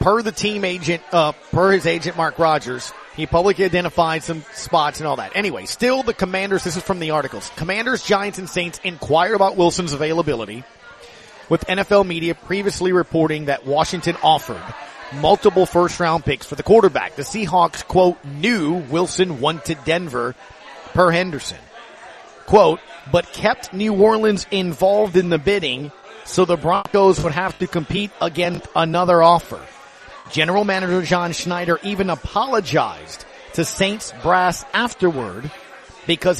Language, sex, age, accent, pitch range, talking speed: English, male, 30-49, American, 160-195 Hz, 145 wpm